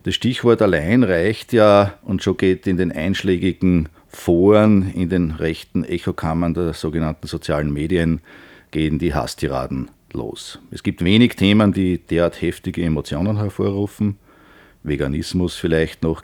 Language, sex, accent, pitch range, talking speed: German, male, Austrian, 80-100 Hz, 135 wpm